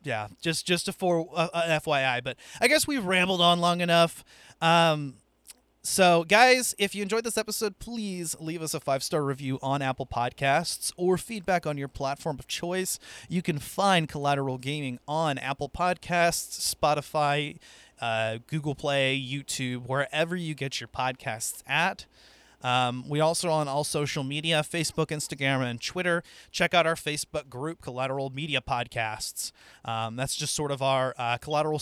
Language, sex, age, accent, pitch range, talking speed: English, male, 30-49, American, 130-165 Hz, 160 wpm